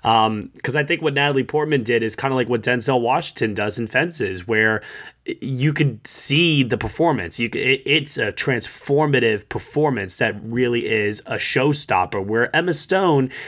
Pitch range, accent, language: 115-145 Hz, American, English